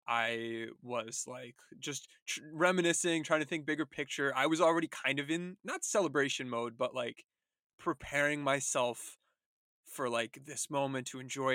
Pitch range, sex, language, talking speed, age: 125-150 Hz, male, English, 155 wpm, 20-39